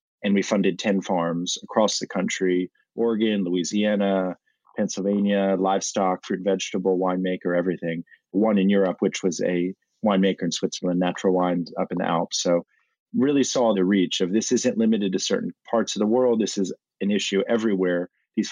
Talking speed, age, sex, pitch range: 170 wpm, 30-49, male, 90-105 Hz